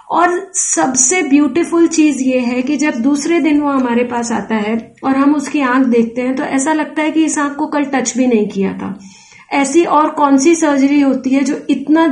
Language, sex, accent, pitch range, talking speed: Gujarati, female, native, 255-310 Hz, 220 wpm